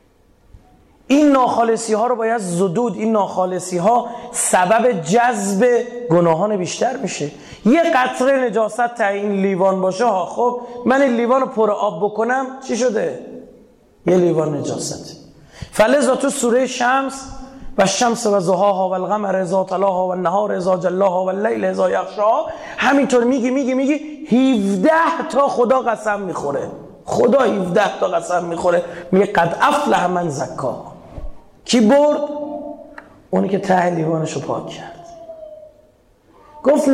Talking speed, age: 125 wpm, 30-49